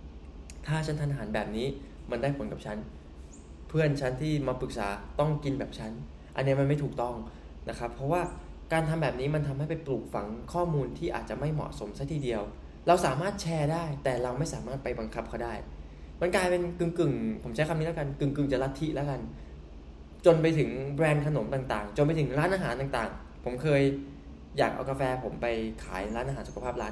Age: 20-39